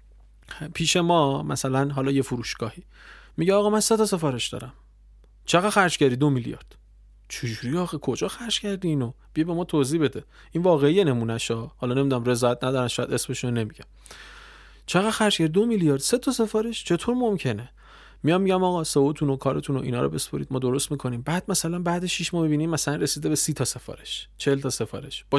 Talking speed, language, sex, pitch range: 170 wpm, Persian, male, 120-170 Hz